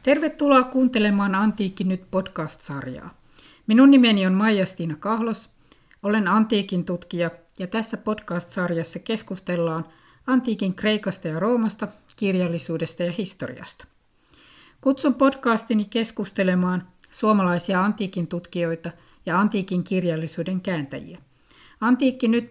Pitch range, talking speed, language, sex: 180-235 Hz, 100 wpm, Finnish, female